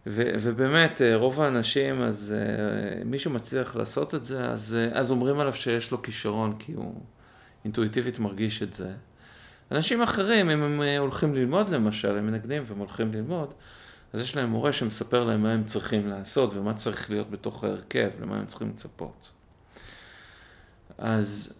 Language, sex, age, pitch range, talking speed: Hebrew, male, 40-59, 105-130 Hz, 155 wpm